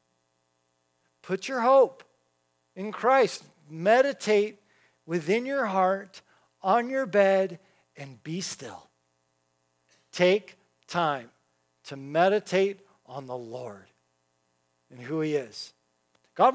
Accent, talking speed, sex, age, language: American, 100 wpm, male, 50-69, English